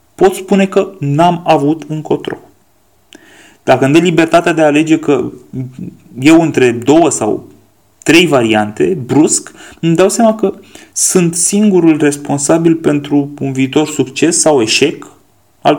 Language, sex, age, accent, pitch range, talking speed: Romanian, male, 30-49, native, 135-170 Hz, 135 wpm